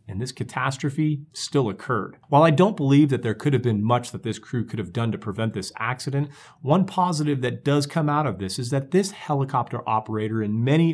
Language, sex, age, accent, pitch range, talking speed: English, male, 40-59, American, 110-150 Hz, 220 wpm